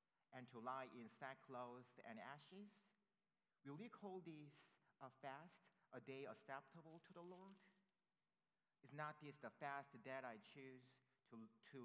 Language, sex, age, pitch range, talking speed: English, male, 50-69, 120-160 Hz, 145 wpm